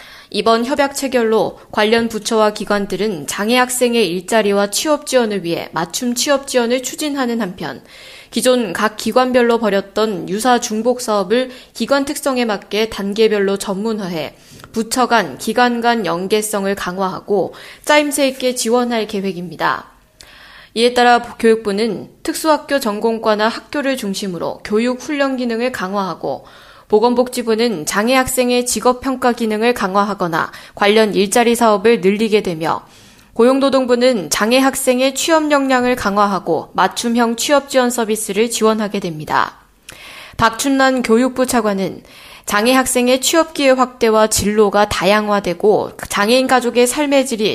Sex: female